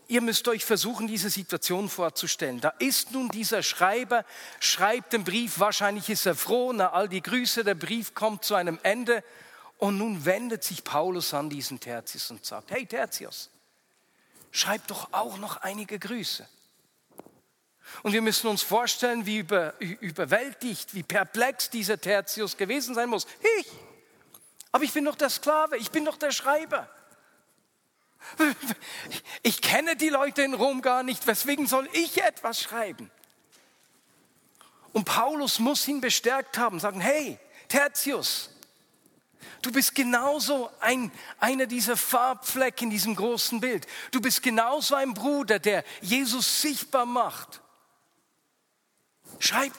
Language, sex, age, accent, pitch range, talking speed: German, male, 40-59, German, 205-265 Hz, 140 wpm